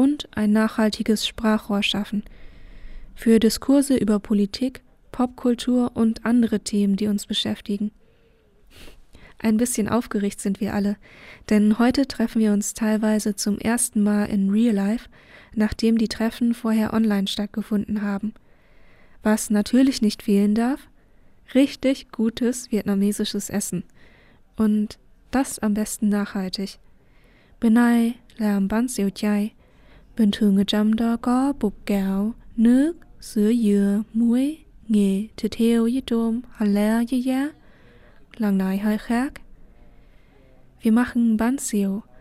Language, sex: German, female